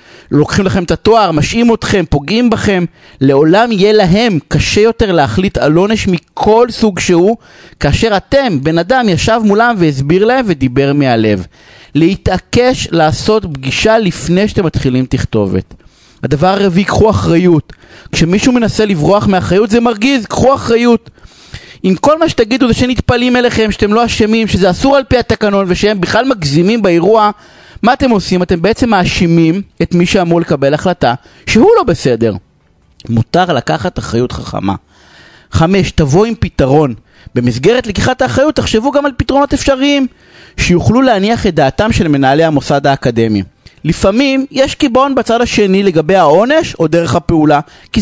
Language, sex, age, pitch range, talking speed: Hebrew, male, 30-49, 135-220 Hz, 145 wpm